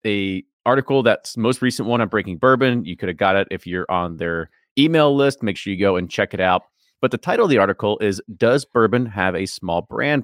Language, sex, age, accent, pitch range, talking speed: English, male, 30-49, American, 95-125 Hz, 240 wpm